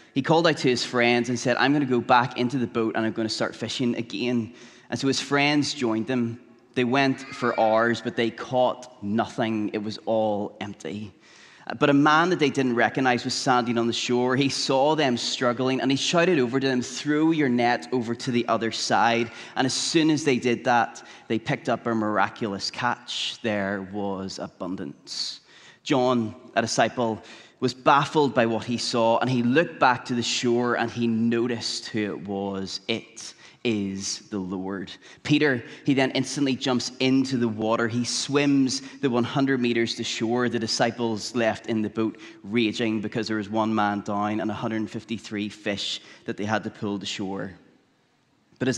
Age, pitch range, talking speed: 20-39, 110-125 Hz, 190 wpm